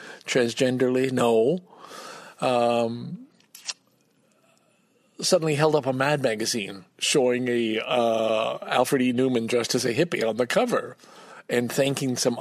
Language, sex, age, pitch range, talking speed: English, male, 50-69, 110-135 Hz, 120 wpm